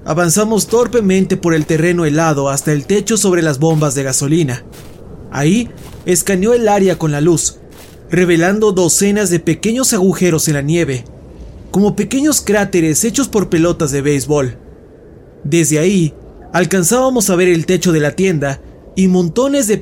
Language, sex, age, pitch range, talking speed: Spanish, male, 30-49, 155-195 Hz, 150 wpm